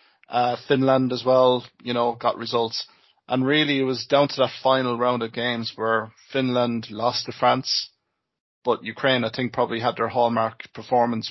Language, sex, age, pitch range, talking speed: English, male, 20-39, 120-130 Hz, 175 wpm